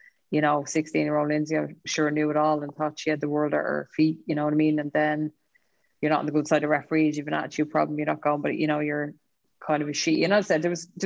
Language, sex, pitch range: English, female, 150-155 Hz